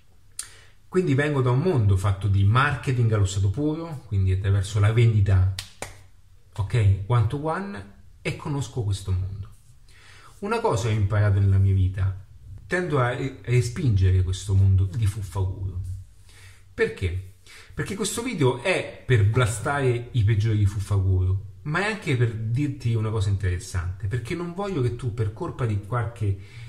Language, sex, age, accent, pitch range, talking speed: Italian, male, 30-49, native, 95-130 Hz, 145 wpm